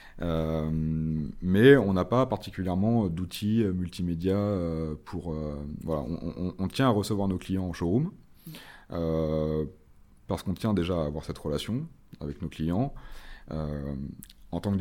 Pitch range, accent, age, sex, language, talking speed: 75-95 Hz, French, 30-49, male, French, 150 wpm